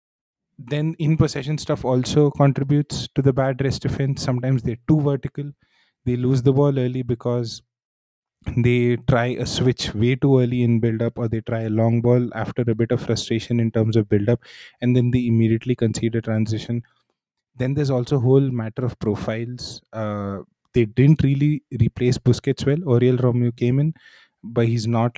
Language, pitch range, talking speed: English, 110-130 Hz, 175 wpm